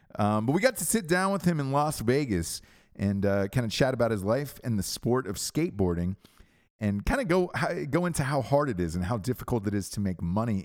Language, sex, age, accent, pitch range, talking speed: English, male, 30-49, American, 95-145 Hz, 240 wpm